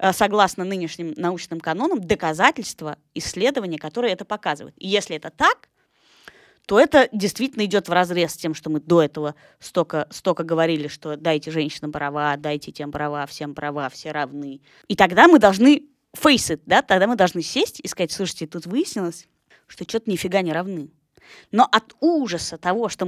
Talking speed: 165 wpm